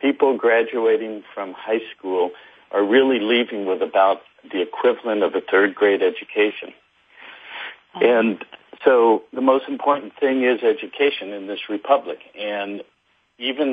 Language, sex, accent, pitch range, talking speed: English, male, American, 95-130 Hz, 130 wpm